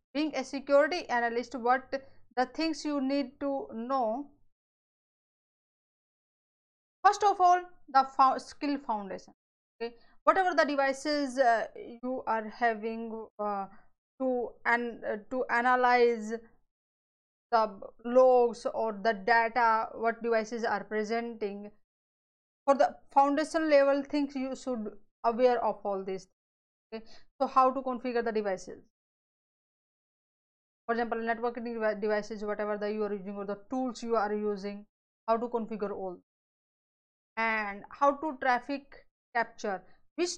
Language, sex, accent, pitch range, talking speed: English, female, Indian, 225-265 Hz, 125 wpm